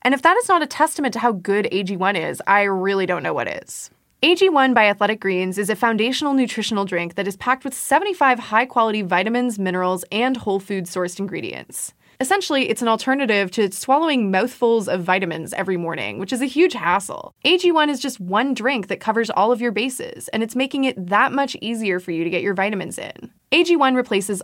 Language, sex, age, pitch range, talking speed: English, female, 20-39, 190-255 Hz, 205 wpm